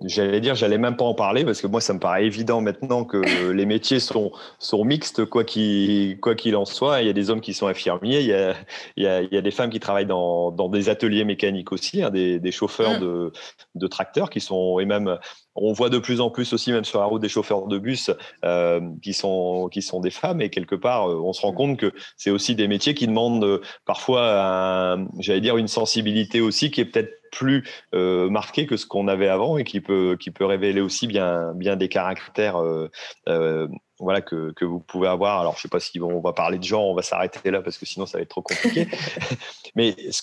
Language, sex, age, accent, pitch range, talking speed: French, male, 30-49, French, 95-120 Hz, 240 wpm